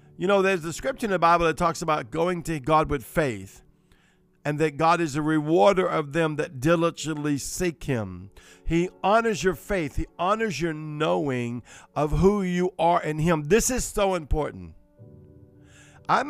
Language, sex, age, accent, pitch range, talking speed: English, male, 50-69, American, 145-205 Hz, 175 wpm